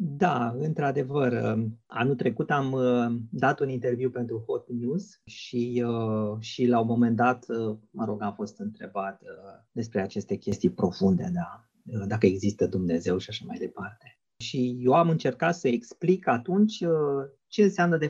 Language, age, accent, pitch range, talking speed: Romanian, 30-49, native, 120-180 Hz, 145 wpm